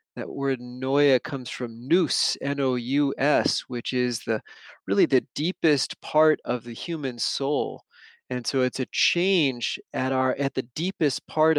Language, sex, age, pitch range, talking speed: English, male, 30-49, 120-145 Hz, 165 wpm